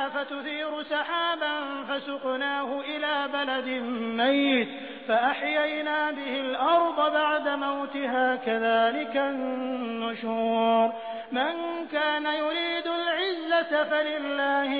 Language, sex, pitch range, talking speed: Hindi, male, 255-300 Hz, 75 wpm